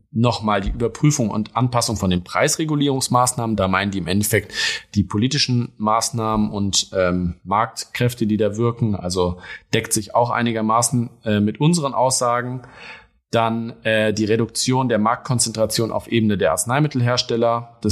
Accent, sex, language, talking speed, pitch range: German, male, German, 140 wpm, 105-125 Hz